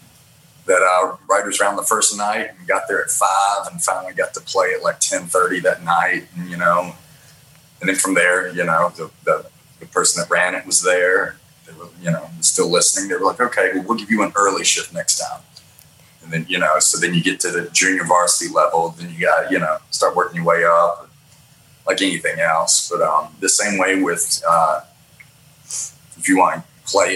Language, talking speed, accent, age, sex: English, 215 wpm, American, 30-49, male